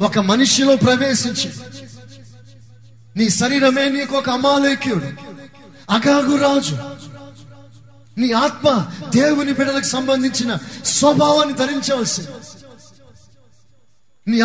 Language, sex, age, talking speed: Telugu, male, 30-49, 75 wpm